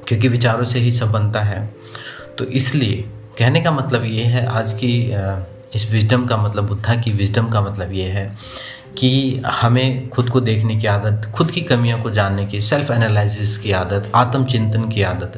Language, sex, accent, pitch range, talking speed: Hindi, male, native, 105-130 Hz, 185 wpm